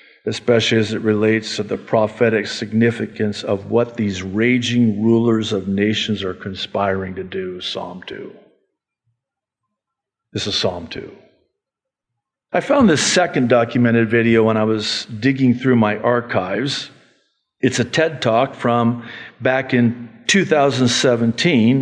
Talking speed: 125 wpm